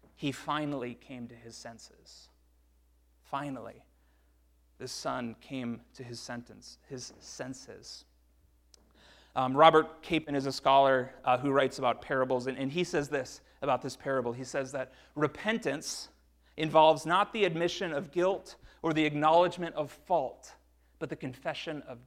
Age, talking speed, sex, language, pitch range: 30-49, 145 wpm, male, English, 110-145 Hz